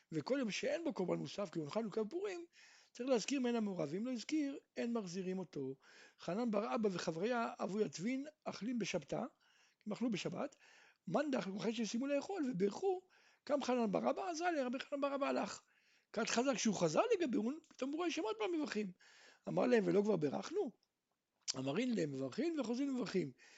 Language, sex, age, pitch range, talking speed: Hebrew, male, 60-79, 205-290 Hz, 145 wpm